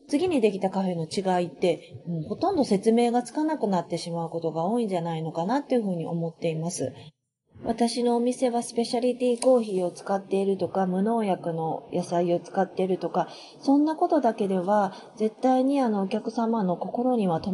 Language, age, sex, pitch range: Japanese, 30-49, female, 180-240 Hz